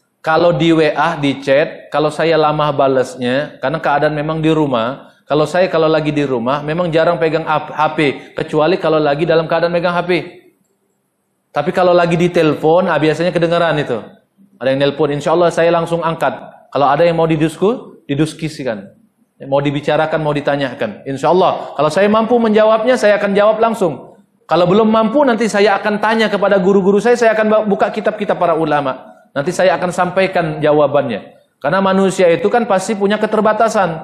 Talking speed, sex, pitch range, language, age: 170 wpm, male, 150-185 Hz, Indonesian, 30-49